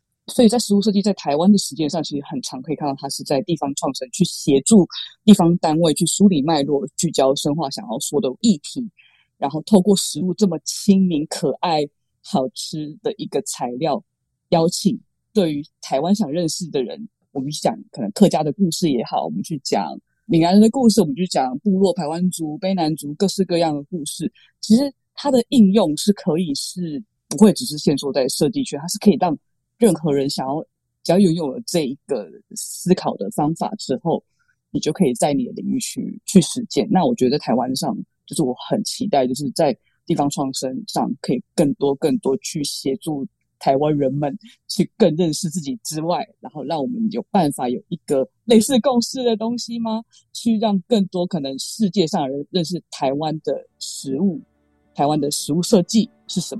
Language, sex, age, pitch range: Chinese, female, 20-39, 150-215 Hz